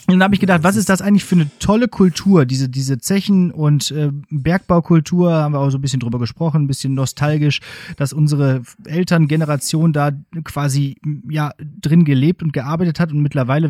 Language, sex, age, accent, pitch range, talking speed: German, male, 30-49, German, 135-170 Hz, 190 wpm